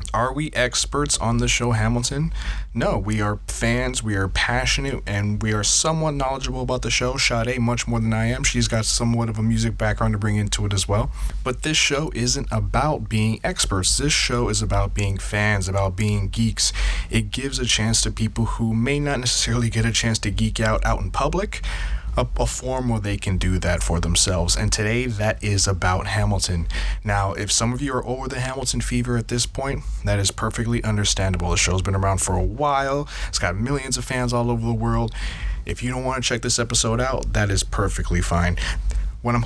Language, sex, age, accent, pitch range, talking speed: English, male, 20-39, American, 100-125 Hz, 215 wpm